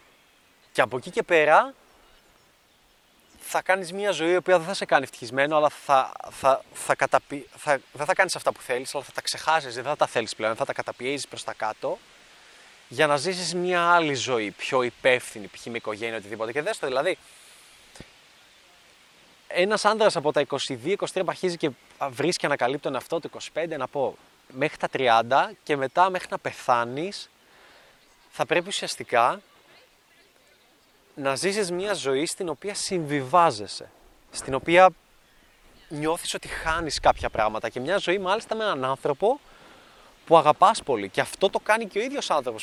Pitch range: 130-185 Hz